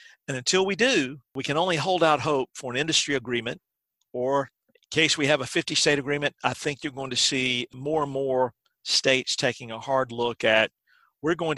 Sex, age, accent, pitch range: male, 50-69, American, 125-150 Hz